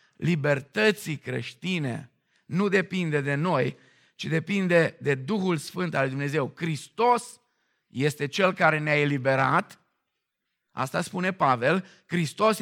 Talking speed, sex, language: 110 wpm, male, Romanian